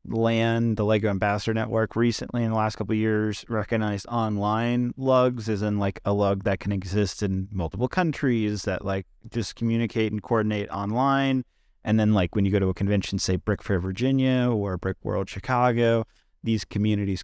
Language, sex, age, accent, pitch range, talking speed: English, male, 30-49, American, 95-115 Hz, 180 wpm